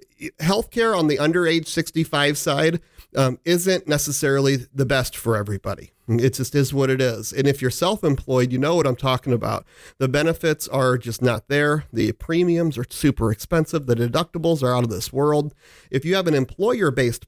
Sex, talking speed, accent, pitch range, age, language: male, 180 wpm, American, 125-160 Hz, 40-59, English